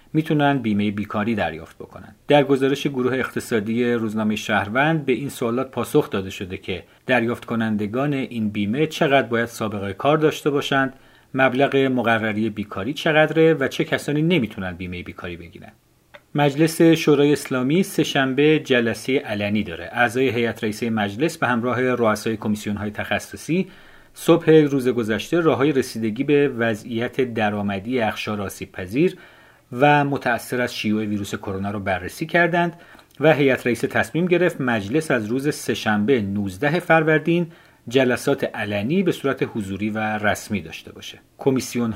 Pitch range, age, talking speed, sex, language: 105-145 Hz, 40-59, 135 wpm, male, Persian